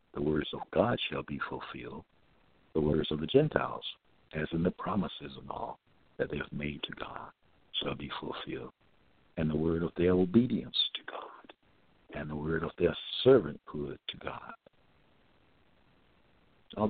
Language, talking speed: English, 155 wpm